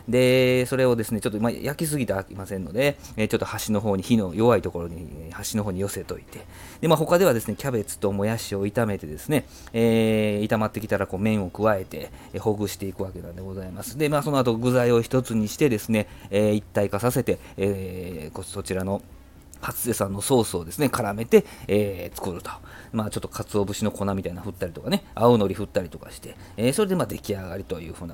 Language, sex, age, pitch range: Japanese, male, 40-59, 100-125 Hz